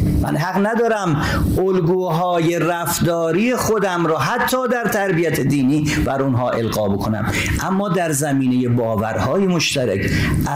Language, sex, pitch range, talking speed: Persian, male, 130-180 Hz, 115 wpm